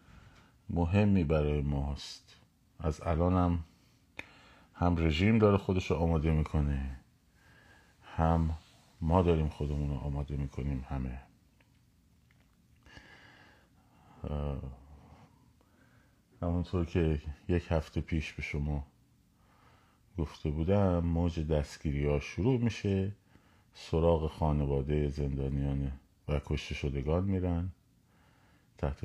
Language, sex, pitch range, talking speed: Persian, male, 75-90 Hz, 90 wpm